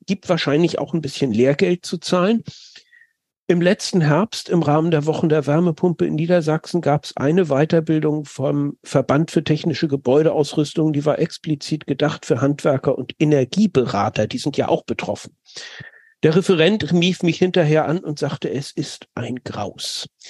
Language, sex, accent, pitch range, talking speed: German, male, German, 145-175 Hz, 155 wpm